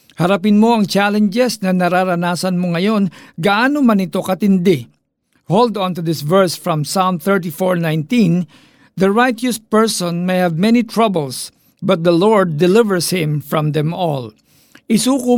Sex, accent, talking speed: male, native, 140 wpm